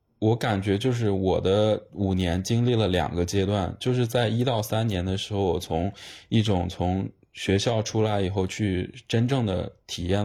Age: 20-39